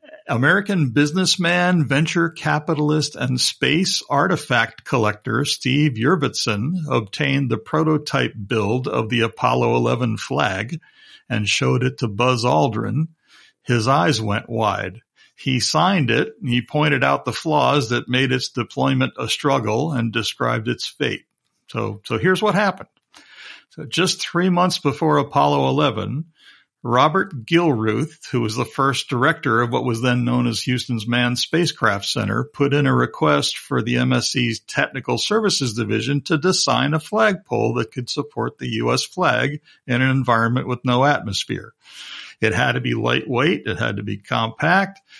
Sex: male